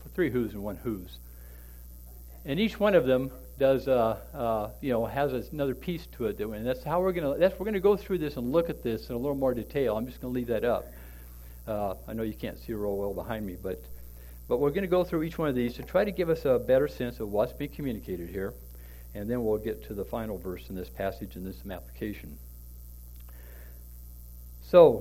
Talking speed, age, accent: 240 wpm, 60-79, American